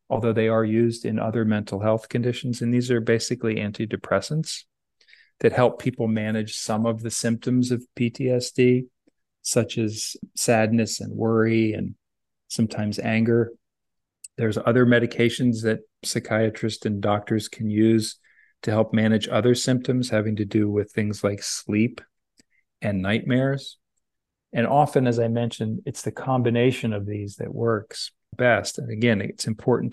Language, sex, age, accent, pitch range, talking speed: English, male, 40-59, American, 110-125 Hz, 145 wpm